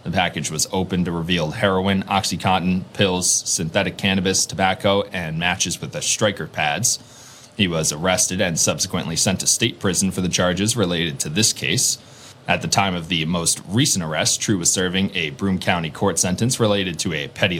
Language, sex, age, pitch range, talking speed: English, male, 30-49, 95-115 Hz, 185 wpm